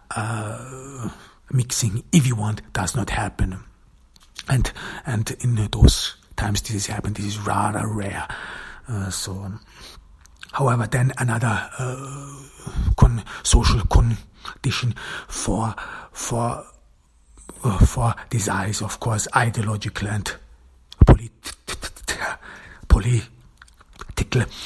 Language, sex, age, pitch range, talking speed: English, male, 60-79, 100-115 Hz, 100 wpm